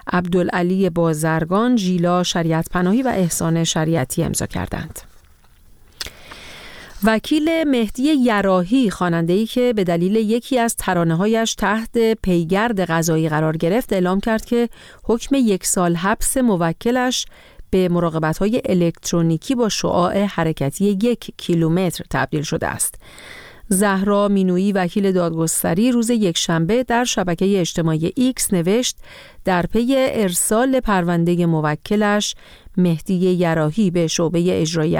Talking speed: 115 wpm